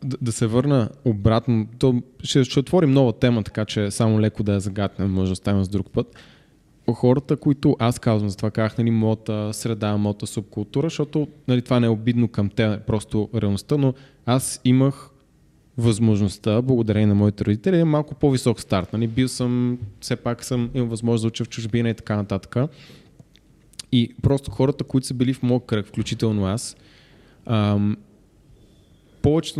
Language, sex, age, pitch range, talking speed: Bulgarian, male, 20-39, 105-130 Hz, 170 wpm